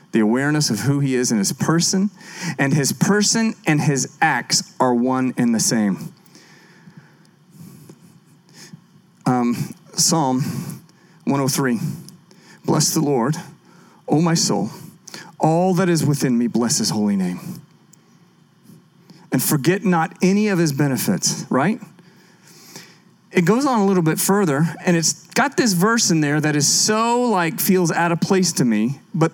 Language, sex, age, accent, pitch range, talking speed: English, male, 40-59, American, 155-190 Hz, 145 wpm